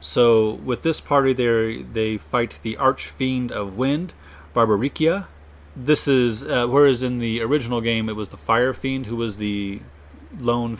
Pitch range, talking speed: 95-125 Hz, 160 wpm